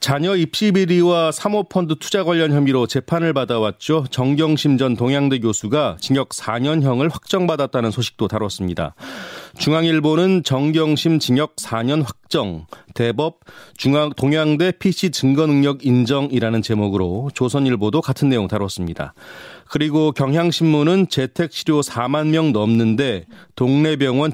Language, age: Korean, 30-49